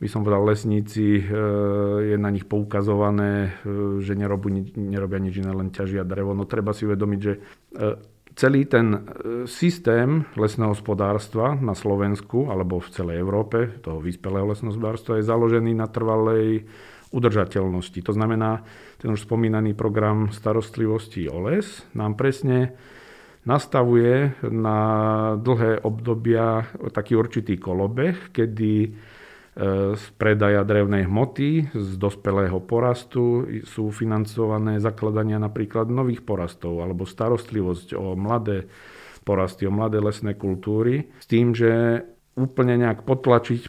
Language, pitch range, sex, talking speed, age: Slovak, 100-115 Hz, male, 120 wpm, 40-59